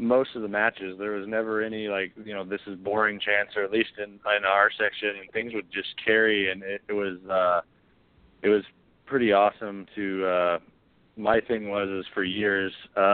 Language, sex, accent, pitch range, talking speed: English, male, American, 100-110 Hz, 200 wpm